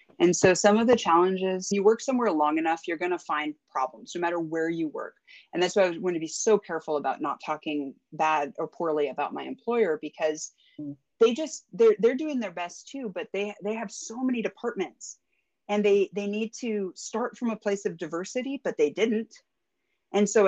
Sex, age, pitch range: female, 30-49, 175-220 Hz